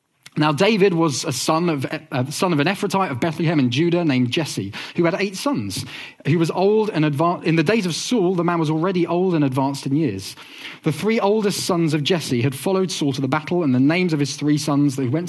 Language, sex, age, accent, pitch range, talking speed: English, male, 30-49, British, 140-180 Hz, 240 wpm